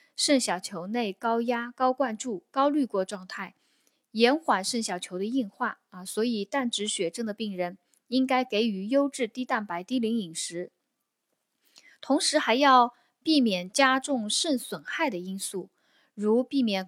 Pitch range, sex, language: 195-265 Hz, female, Chinese